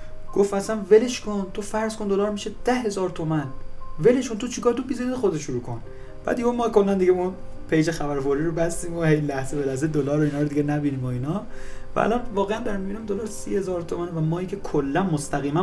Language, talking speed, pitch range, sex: Persian, 215 wpm, 130-180 Hz, male